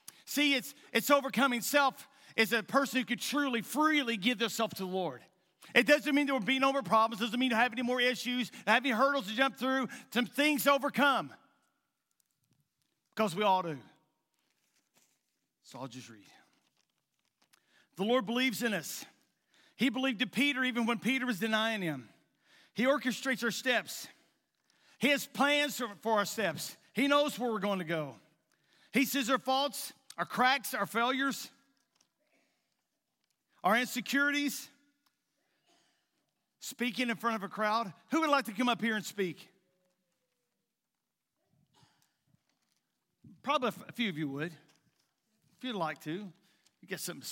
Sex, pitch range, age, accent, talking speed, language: male, 190-270 Hz, 50-69, American, 155 wpm, English